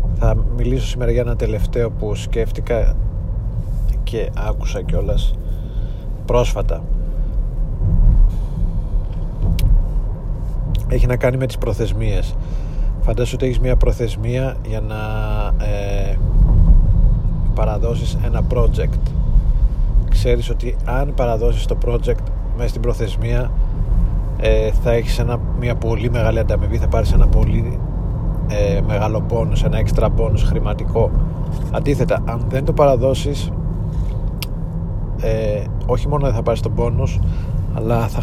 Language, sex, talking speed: Greek, male, 115 wpm